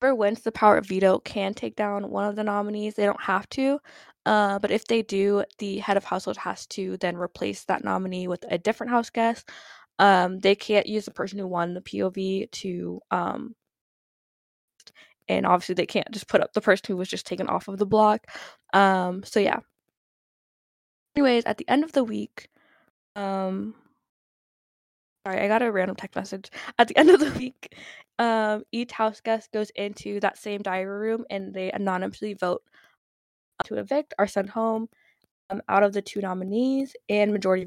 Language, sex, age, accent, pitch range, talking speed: English, female, 10-29, American, 195-230 Hz, 185 wpm